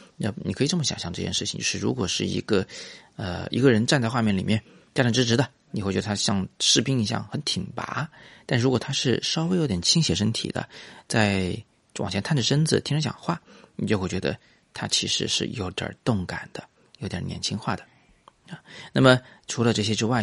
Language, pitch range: Chinese, 100-140 Hz